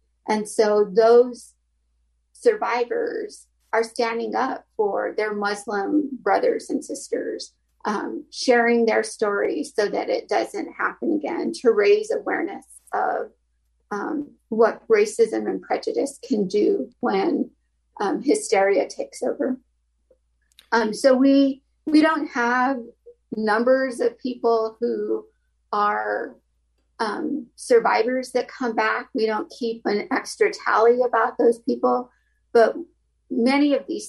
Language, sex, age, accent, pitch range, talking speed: English, female, 40-59, American, 215-310 Hz, 120 wpm